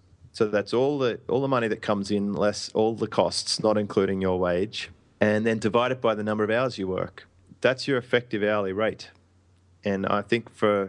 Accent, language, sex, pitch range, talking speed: Australian, English, male, 95-105 Hz, 210 wpm